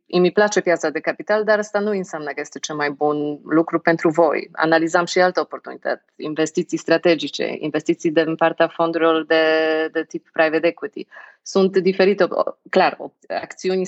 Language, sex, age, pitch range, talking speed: Romanian, female, 30-49, 160-195 Hz, 165 wpm